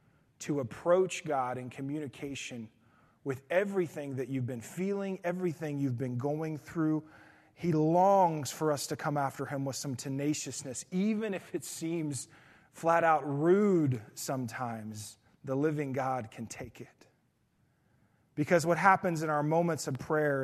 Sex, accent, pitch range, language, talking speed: male, American, 135-175 Hz, English, 145 wpm